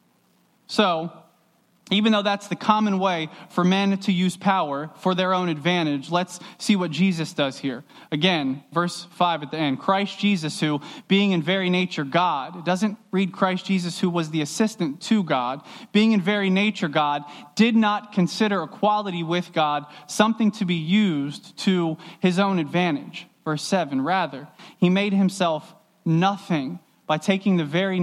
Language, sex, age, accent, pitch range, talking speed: English, male, 20-39, American, 155-200 Hz, 165 wpm